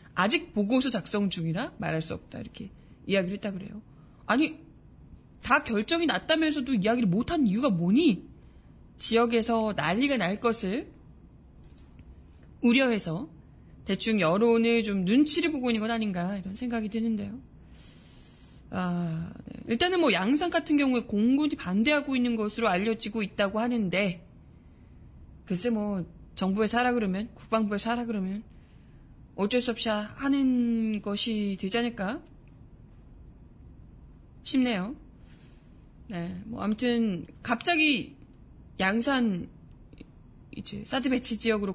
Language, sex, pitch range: Korean, female, 195-245 Hz